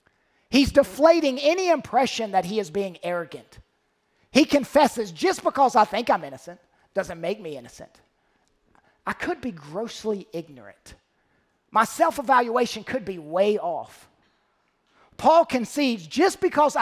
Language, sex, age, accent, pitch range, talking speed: English, male, 40-59, American, 165-255 Hz, 130 wpm